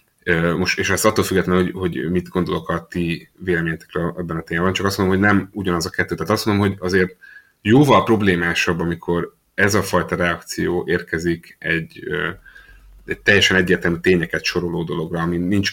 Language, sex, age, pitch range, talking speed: Hungarian, male, 30-49, 85-95 Hz, 170 wpm